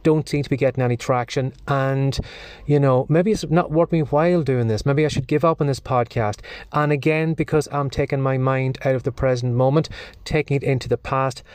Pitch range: 130-160 Hz